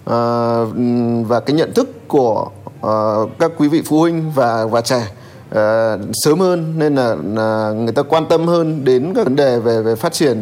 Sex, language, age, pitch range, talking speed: male, Vietnamese, 20-39, 120-150 Hz, 195 wpm